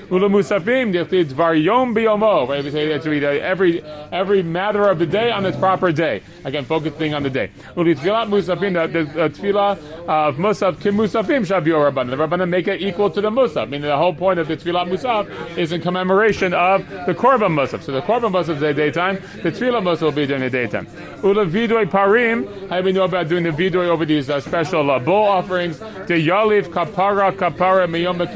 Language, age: English, 30-49